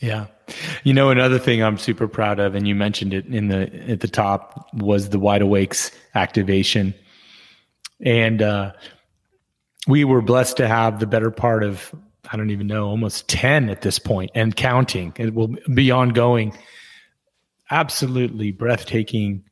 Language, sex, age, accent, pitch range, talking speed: English, male, 30-49, American, 100-120 Hz, 155 wpm